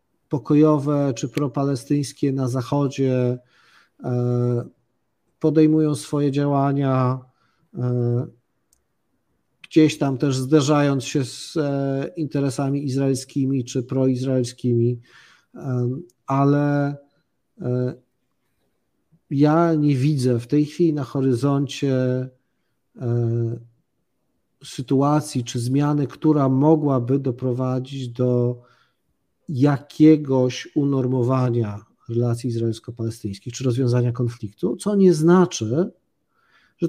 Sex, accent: male, native